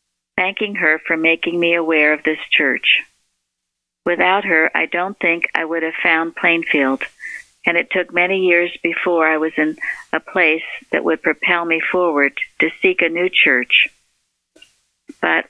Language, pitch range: English, 155-180 Hz